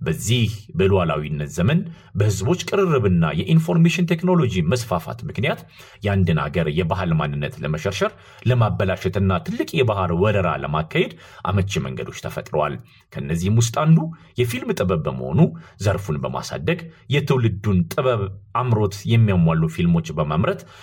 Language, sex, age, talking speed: Amharic, male, 40-59, 100 wpm